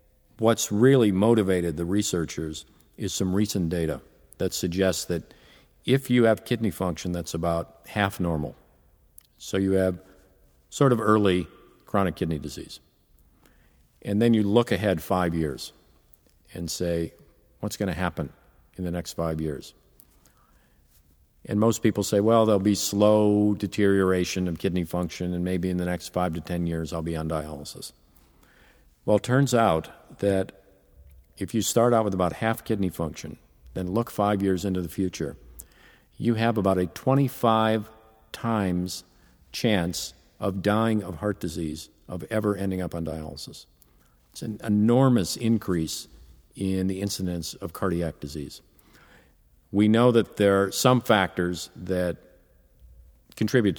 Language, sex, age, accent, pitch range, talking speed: English, male, 50-69, American, 80-105 Hz, 145 wpm